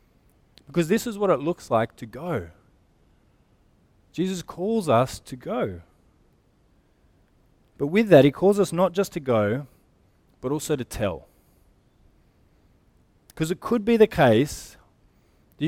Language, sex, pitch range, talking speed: English, male, 115-160 Hz, 135 wpm